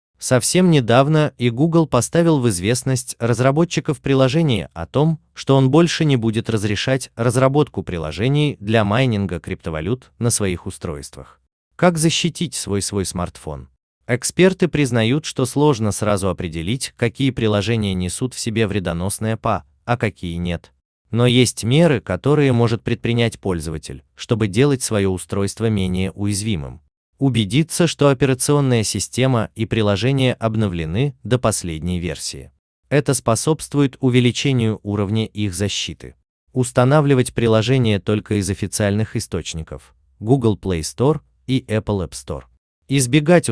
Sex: male